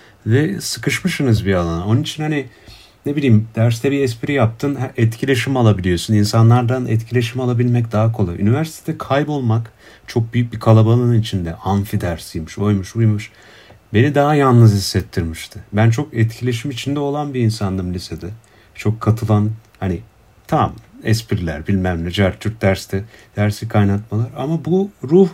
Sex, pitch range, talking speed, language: male, 105-140 Hz, 135 wpm, Turkish